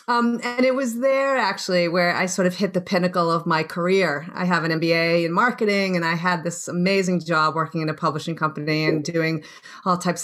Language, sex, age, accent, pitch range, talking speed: English, female, 40-59, American, 170-195 Hz, 215 wpm